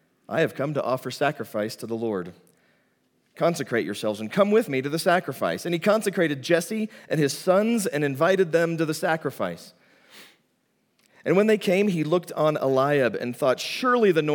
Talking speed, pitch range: 175 wpm, 115-180 Hz